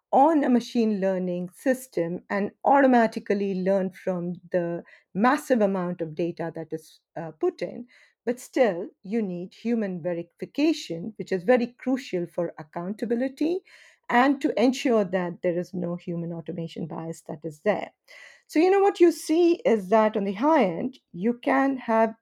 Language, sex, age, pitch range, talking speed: English, female, 50-69, 185-270 Hz, 160 wpm